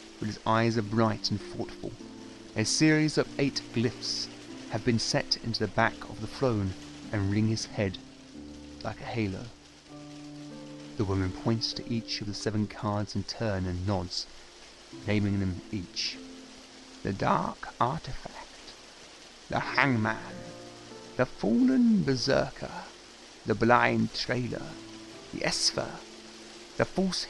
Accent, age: British, 30-49